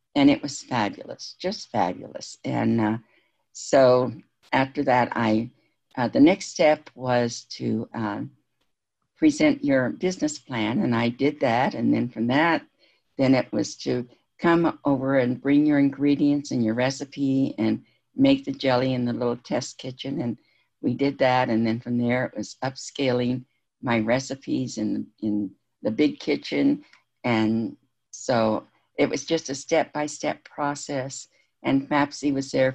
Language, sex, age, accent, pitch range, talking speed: English, female, 60-79, American, 120-140 Hz, 150 wpm